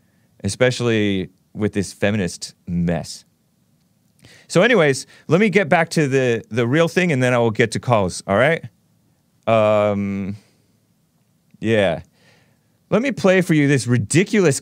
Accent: American